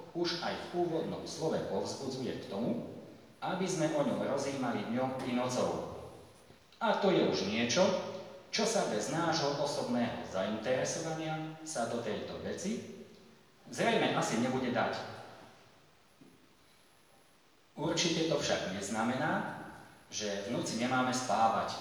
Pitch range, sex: 120-180 Hz, male